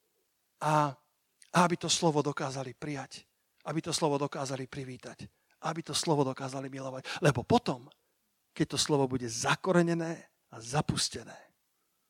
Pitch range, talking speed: 140-175 Hz, 130 wpm